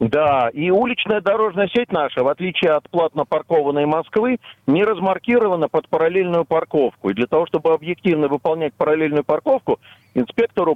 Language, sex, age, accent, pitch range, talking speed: Russian, male, 50-69, native, 130-175 Hz, 145 wpm